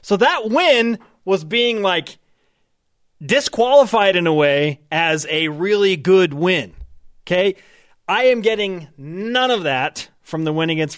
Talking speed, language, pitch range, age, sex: 140 wpm, English, 150-220 Hz, 30-49, male